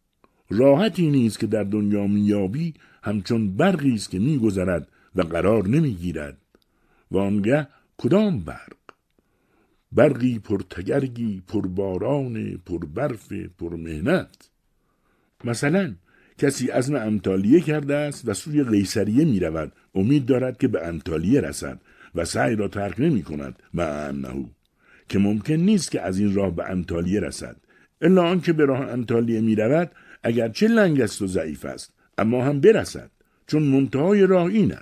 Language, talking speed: Persian, 130 wpm